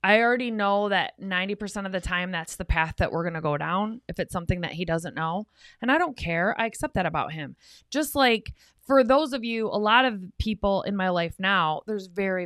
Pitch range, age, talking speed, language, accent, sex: 170-215 Hz, 20-39, 230 wpm, English, American, female